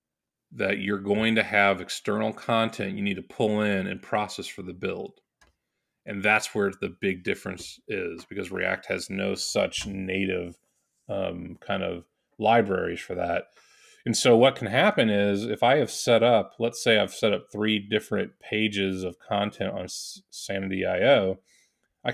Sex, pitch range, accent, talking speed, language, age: male, 95-115 Hz, American, 165 wpm, English, 30-49